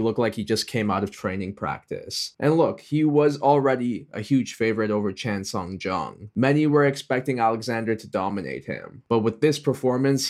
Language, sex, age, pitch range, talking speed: English, male, 20-39, 105-125 Hz, 185 wpm